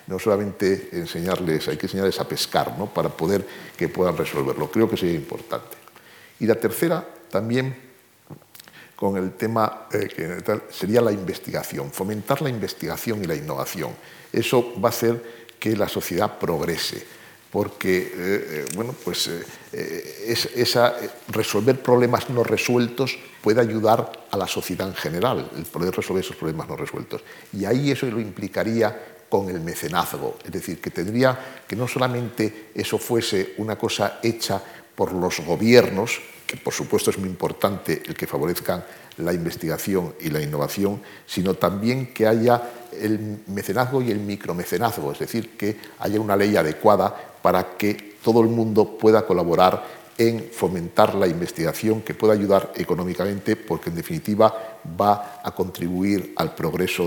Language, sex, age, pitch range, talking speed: Spanish, male, 60-79, 100-115 Hz, 150 wpm